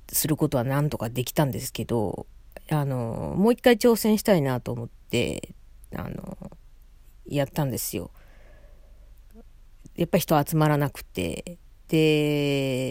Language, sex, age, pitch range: Japanese, female, 40-59, 120-180 Hz